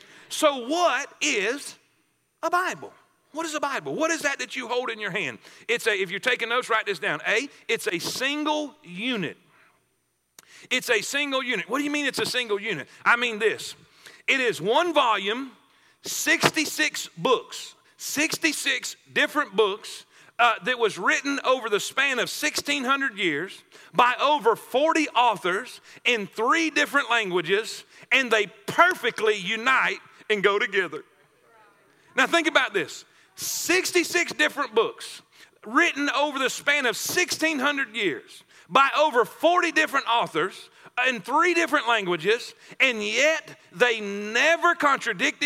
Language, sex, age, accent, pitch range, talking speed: English, male, 40-59, American, 245-335 Hz, 145 wpm